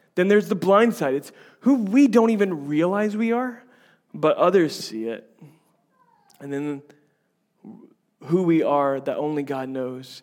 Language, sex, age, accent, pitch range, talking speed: English, male, 30-49, American, 145-175 Hz, 155 wpm